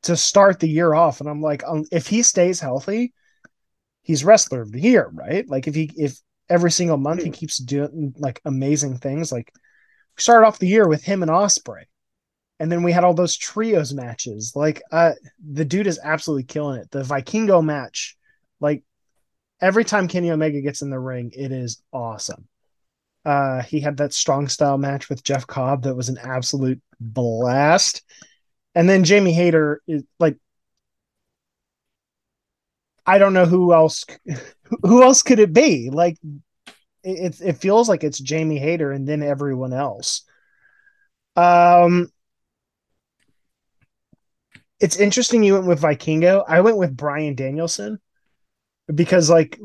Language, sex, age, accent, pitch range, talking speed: English, male, 20-39, American, 140-185 Hz, 155 wpm